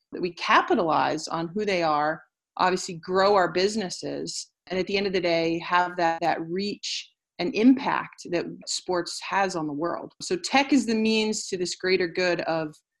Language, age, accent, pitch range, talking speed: English, 30-49, American, 170-225 Hz, 185 wpm